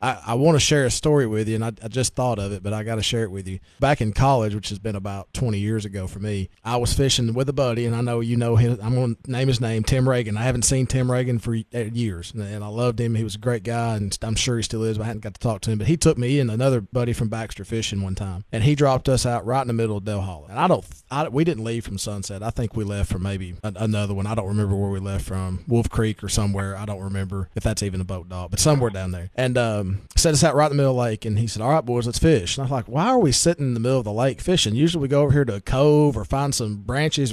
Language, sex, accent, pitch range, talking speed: English, male, American, 105-140 Hz, 320 wpm